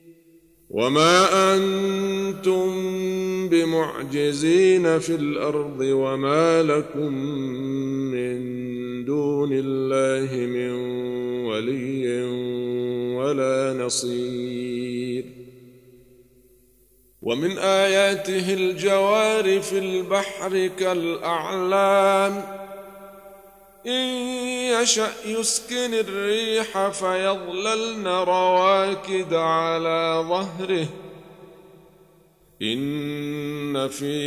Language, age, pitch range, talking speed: Arabic, 50-69, 135-195 Hz, 55 wpm